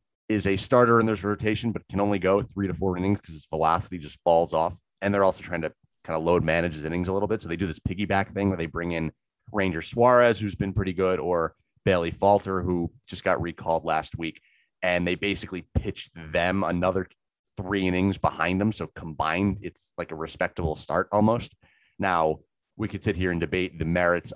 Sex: male